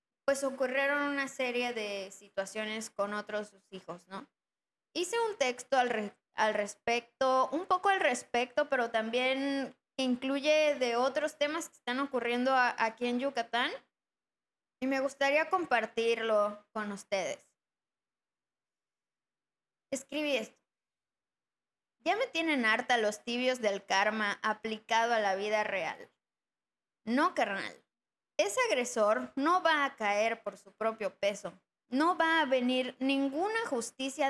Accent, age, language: Mexican, 20-39, Spanish